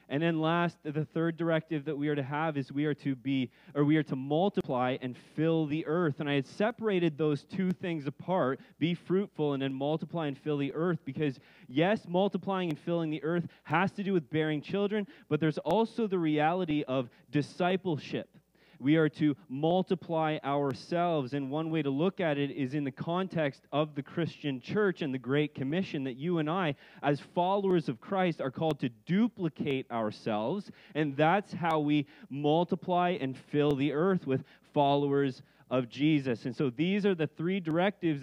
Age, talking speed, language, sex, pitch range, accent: 20-39, 185 wpm, English, male, 145-180 Hz, American